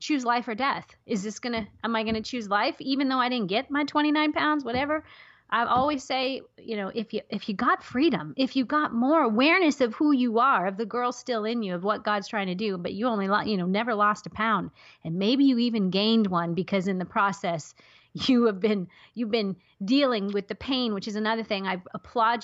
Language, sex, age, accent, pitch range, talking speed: English, female, 30-49, American, 195-245 Hz, 235 wpm